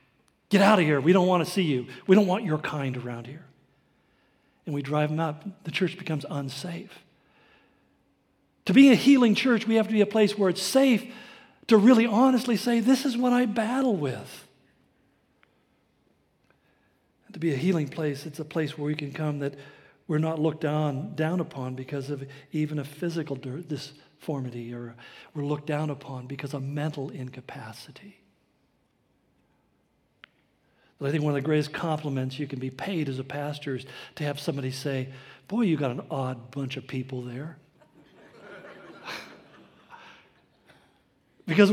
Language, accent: English, American